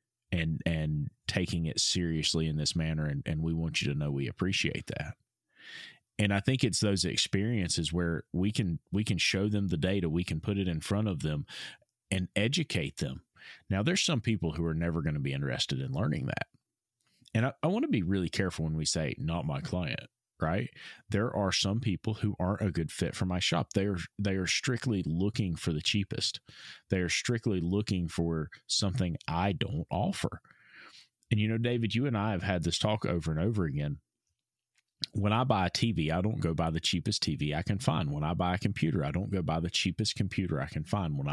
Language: English